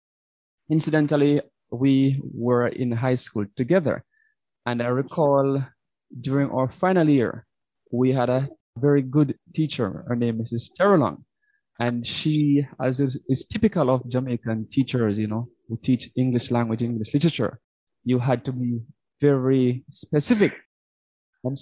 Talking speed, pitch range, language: 135 wpm, 120-150 Hz, English